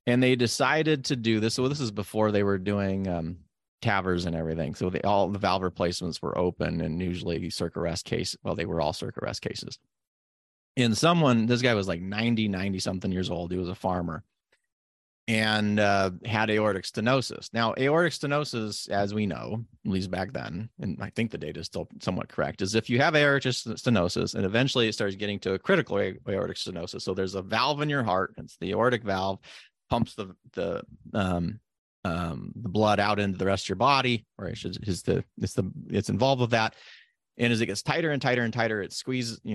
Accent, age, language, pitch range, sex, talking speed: American, 30-49, English, 90-120 Hz, male, 210 wpm